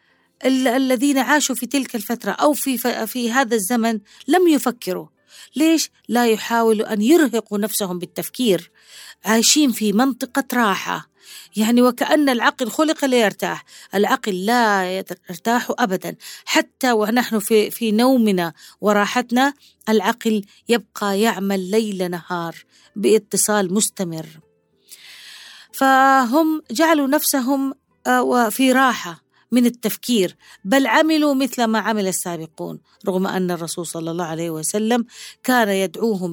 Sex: female